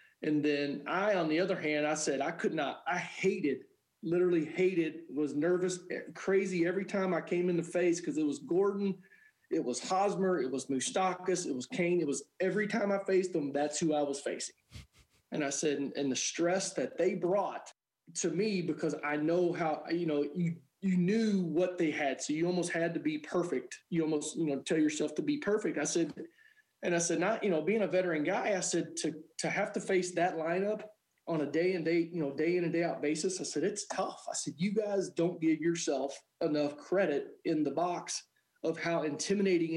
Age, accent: 30-49, American